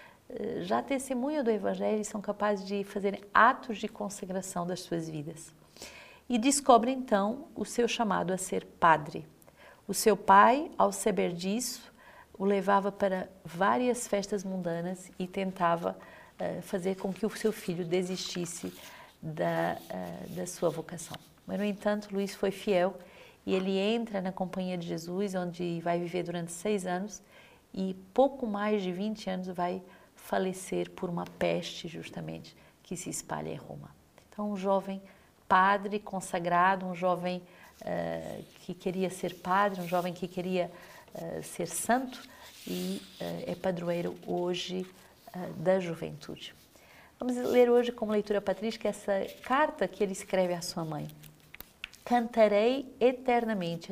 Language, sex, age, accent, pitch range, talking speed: Portuguese, female, 40-59, Brazilian, 180-210 Hz, 145 wpm